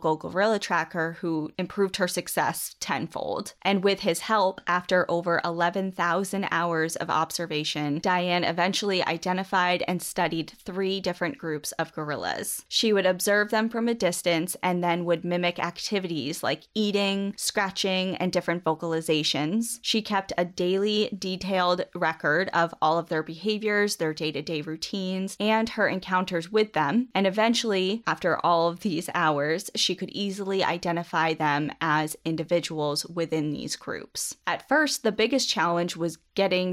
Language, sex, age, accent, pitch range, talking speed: English, female, 10-29, American, 165-200 Hz, 150 wpm